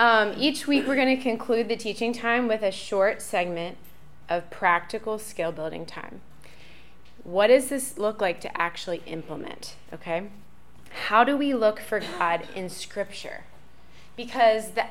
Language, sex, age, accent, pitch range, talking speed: English, female, 20-39, American, 180-235 Hz, 155 wpm